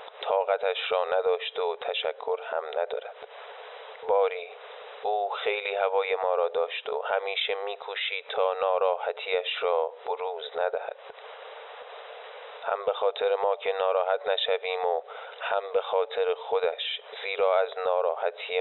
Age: 20-39